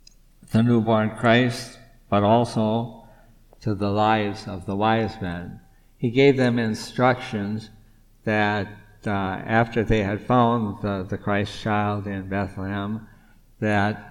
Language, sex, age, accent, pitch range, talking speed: English, male, 60-79, American, 100-115 Hz, 120 wpm